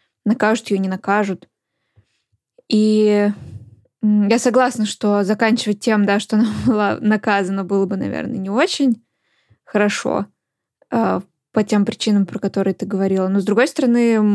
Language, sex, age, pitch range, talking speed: Russian, female, 20-39, 195-220 Hz, 135 wpm